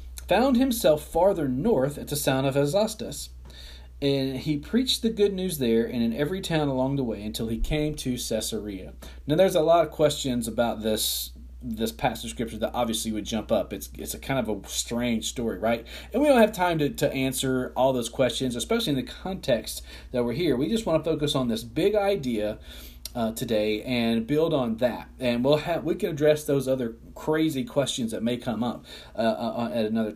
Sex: male